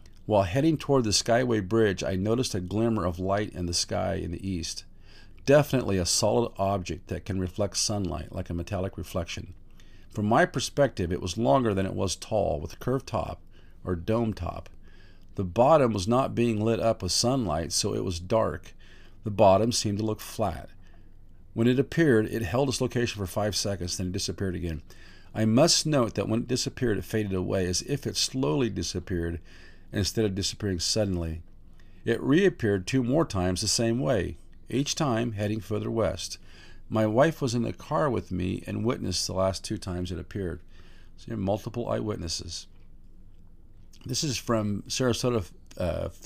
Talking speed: 180 wpm